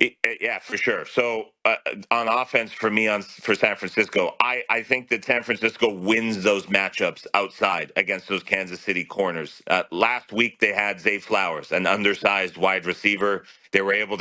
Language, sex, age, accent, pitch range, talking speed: English, male, 40-59, American, 100-115 Hz, 175 wpm